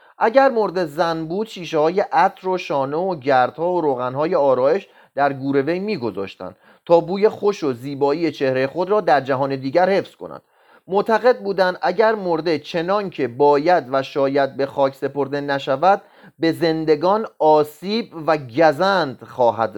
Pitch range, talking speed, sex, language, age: 145-200 Hz, 145 wpm, male, Persian, 30-49